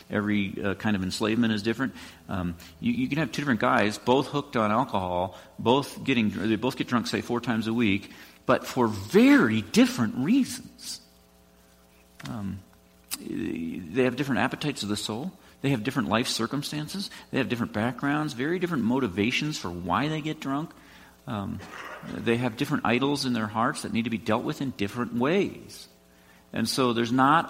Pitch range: 80-125 Hz